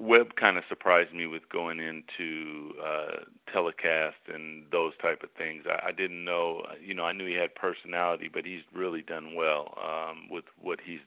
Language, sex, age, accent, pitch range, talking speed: English, male, 40-59, American, 85-110 Hz, 190 wpm